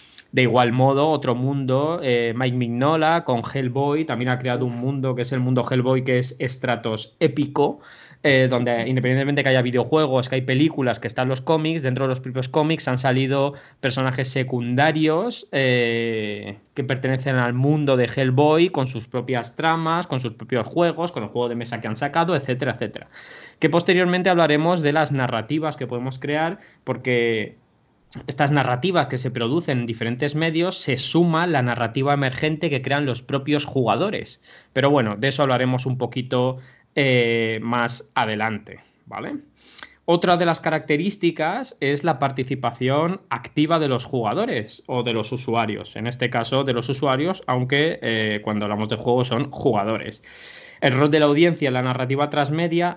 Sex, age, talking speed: male, 20-39, 170 wpm